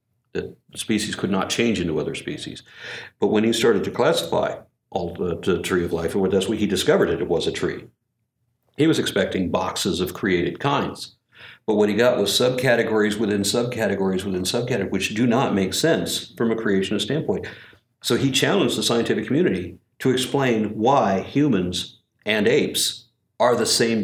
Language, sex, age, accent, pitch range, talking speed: English, male, 60-79, American, 90-115 Hz, 175 wpm